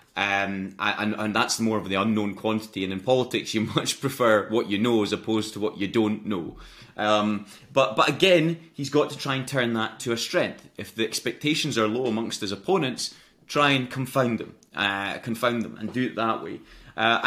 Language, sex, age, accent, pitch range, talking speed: English, male, 30-49, British, 100-120 Hz, 200 wpm